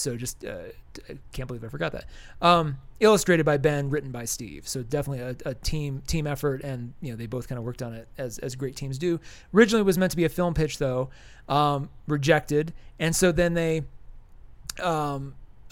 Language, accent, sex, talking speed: English, American, male, 210 wpm